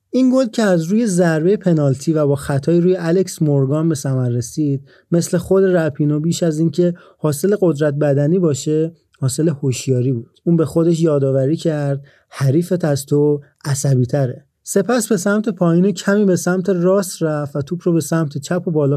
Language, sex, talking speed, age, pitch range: Persian, male, 170 wpm, 30-49, 145-175 Hz